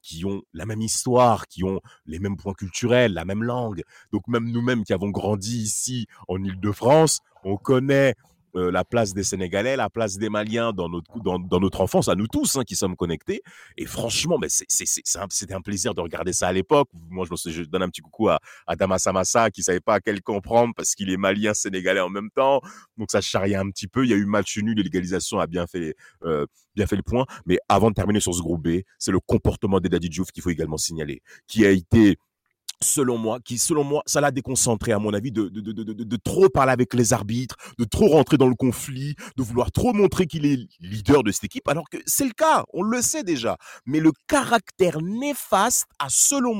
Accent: French